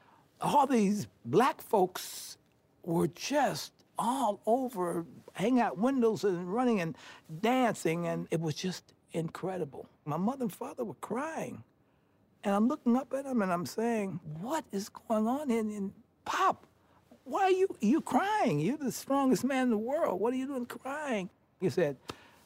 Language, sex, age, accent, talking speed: English, male, 60-79, American, 165 wpm